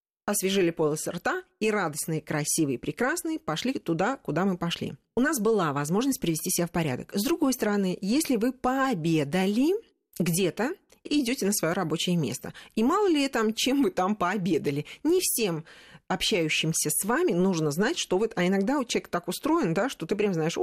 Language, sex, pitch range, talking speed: Russian, female, 170-240 Hz, 185 wpm